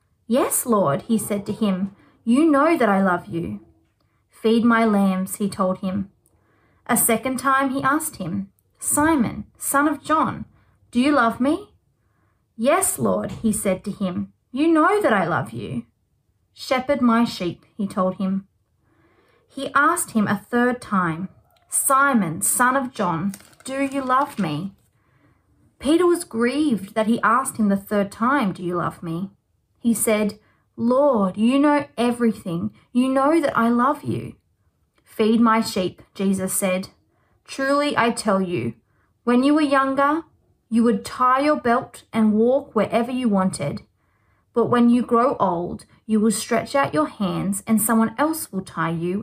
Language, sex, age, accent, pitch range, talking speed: English, female, 30-49, Australian, 190-260 Hz, 160 wpm